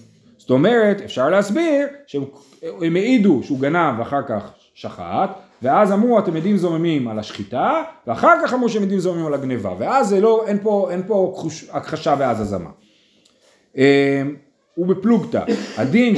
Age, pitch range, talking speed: 30-49, 145-215 Hz, 130 wpm